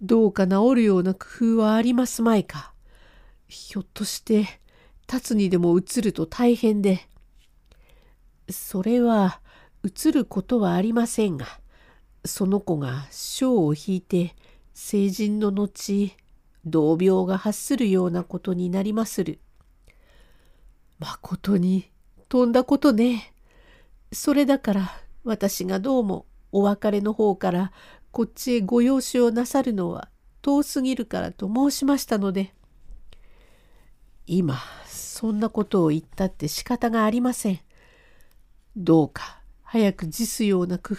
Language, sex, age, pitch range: Japanese, female, 50-69, 180-235 Hz